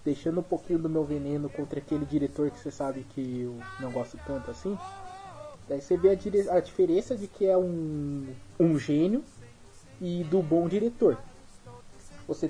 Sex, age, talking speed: male, 20-39, 175 wpm